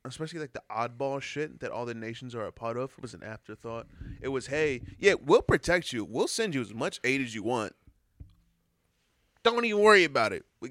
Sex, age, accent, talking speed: male, 20-39, American, 220 wpm